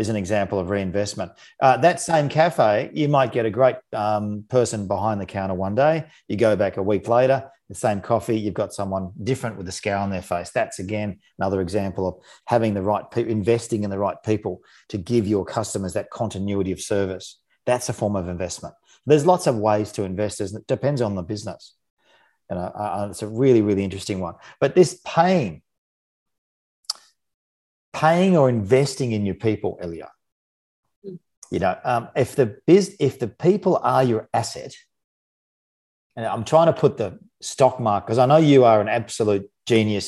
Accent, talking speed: Australian, 185 wpm